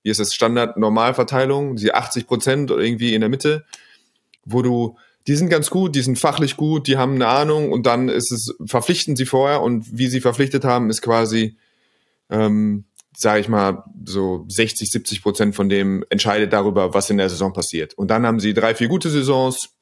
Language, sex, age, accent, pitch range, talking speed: German, male, 30-49, German, 105-135 Hz, 195 wpm